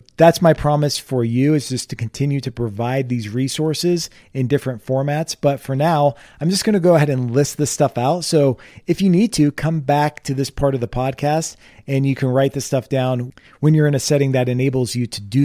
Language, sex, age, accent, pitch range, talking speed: English, male, 40-59, American, 125-155 Hz, 230 wpm